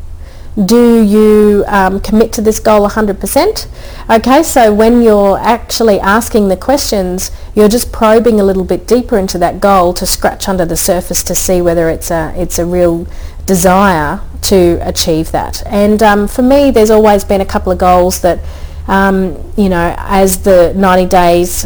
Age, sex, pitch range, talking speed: 30-49, female, 175-210 Hz, 170 wpm